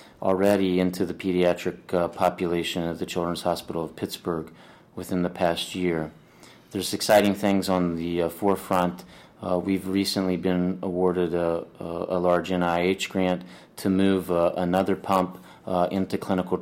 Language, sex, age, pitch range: English, male, 30-49, 85-95 Hz